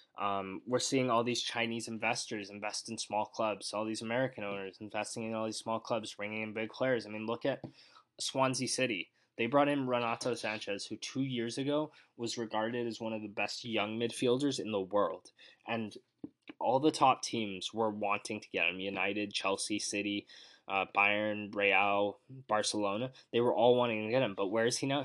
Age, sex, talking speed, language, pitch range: 20-39, male, 195 wpm, English, 110-145 Hz